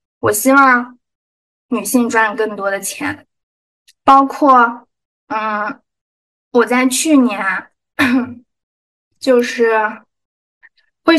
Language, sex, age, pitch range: Chinese, female, 20-39, 225-280 Hz